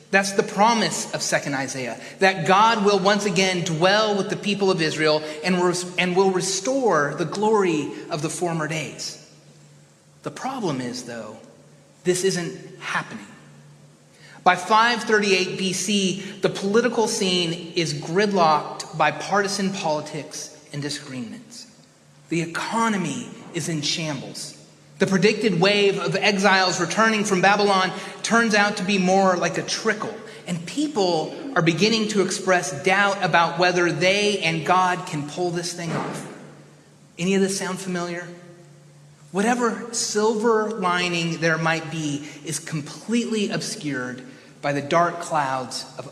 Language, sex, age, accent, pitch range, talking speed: English, male, 30-49, American, 155-205 Hz, 135 wpm